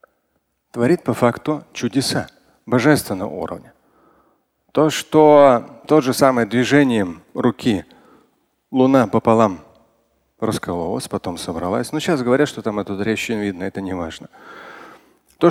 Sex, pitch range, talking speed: male, 115-150 Hz, 120 wpm